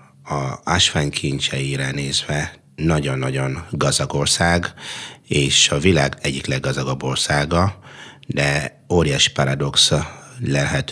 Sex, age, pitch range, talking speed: male, 30-49, 70-75 Hz, 95 wpm